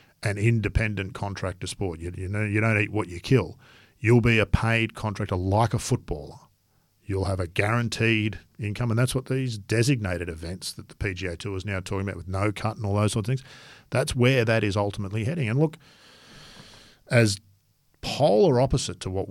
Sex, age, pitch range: male, 50-69, 95-120 Hz